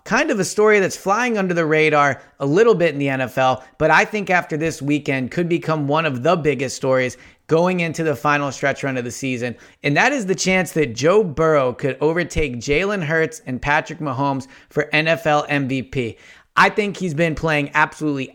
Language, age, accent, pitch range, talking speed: English, 30-49, American, 140-180 Hz, 200 wpm